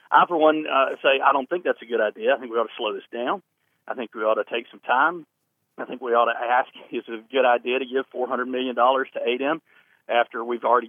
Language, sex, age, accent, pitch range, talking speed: English, male, 40-59, American, 130-175 Hz, 265 wpm